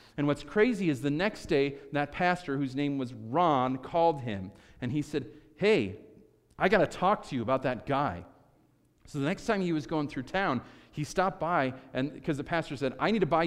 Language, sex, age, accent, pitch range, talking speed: English, male, 40-59, American, 135-180 Hz, 210 wpm